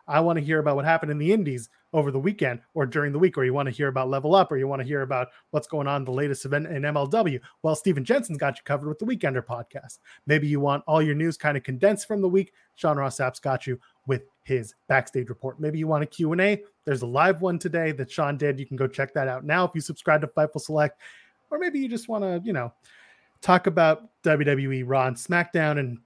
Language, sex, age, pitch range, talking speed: English, male, 30-49, 135-165 Hz, 260 wpm